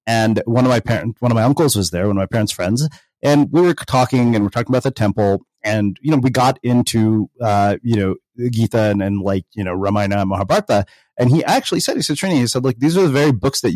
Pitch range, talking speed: 105-130 Hz, 265 wpm